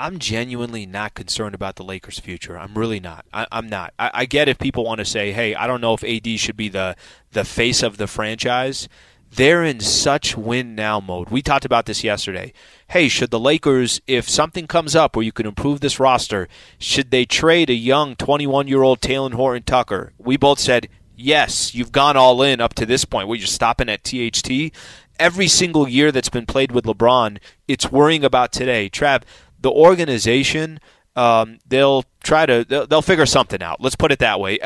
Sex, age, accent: male, 30-49, American